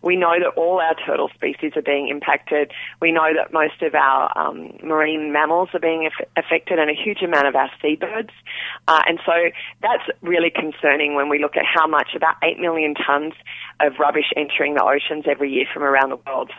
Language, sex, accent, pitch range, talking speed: English, female, Australian, 145-175 Hz, 205 wpm